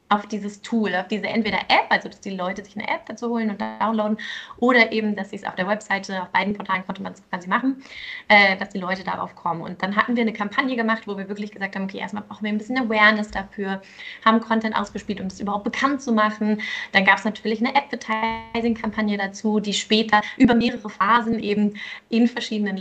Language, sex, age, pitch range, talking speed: German, female, 20-39, 195-225 Hz, 225 wpm